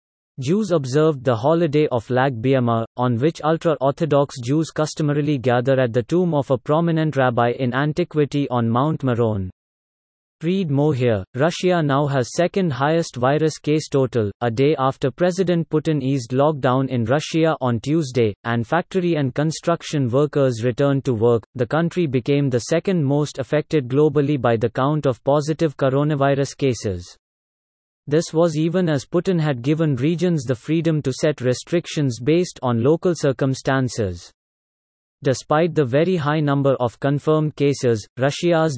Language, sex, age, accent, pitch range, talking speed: English, male, 30-49, Indian, 130-155 Hz, 145 wpm